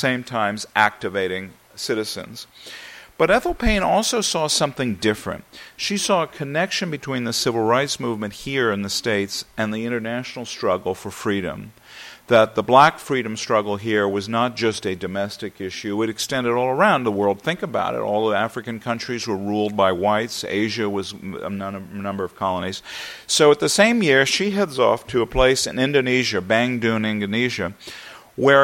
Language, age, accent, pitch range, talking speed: English, 50-69, American, 105-140 Hz, 170 wpm